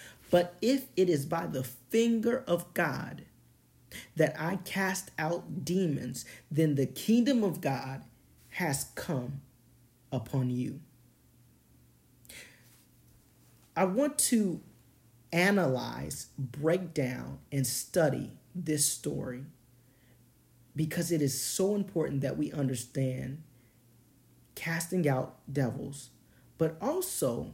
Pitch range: 125-175 Hz